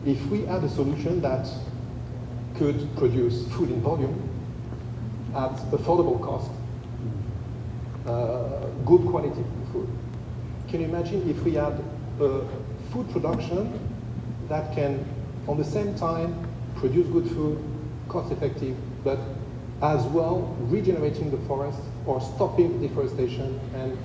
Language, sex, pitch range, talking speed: English, male, 120-135 Hz, 120 wpm